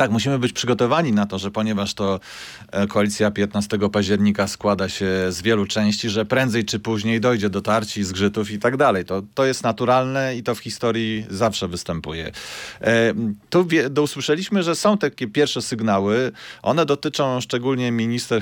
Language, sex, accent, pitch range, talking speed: Polish, male, native, 100-125 Hz, 155 wpm